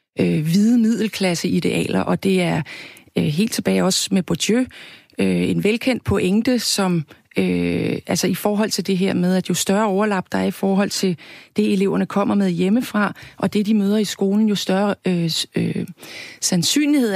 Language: Danish